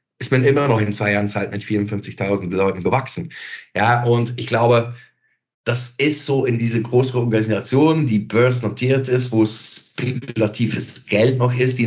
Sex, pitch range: male, 105-125 Hz